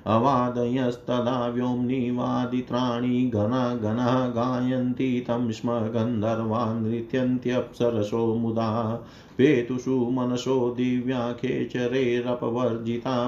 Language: Hindi